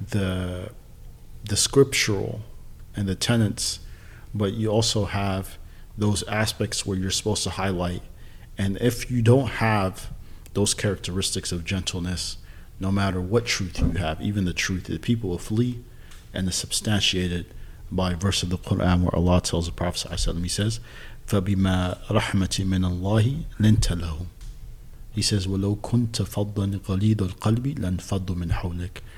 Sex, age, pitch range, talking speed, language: male, 40-59, 90-110 Hz, 130 wpm, English